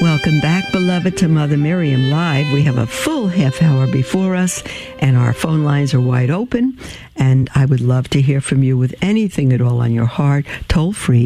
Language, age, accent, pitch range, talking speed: English, 60-79, American, 125-160 Hz, 210 wpm